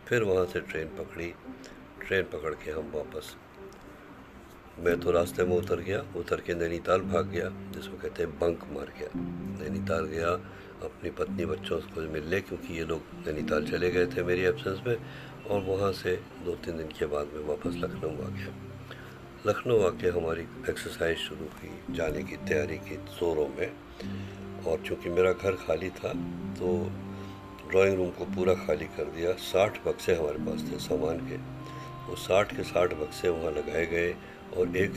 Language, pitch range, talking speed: Hindi, 85-100 Hz, 175 wpm